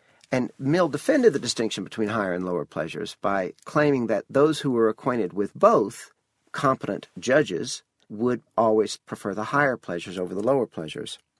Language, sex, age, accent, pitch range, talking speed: English, male, 50-69, American, 105-150 Hz, 165 wpm